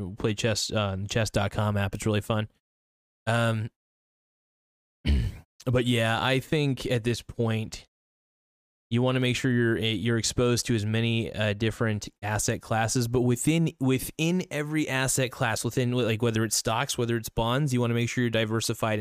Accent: American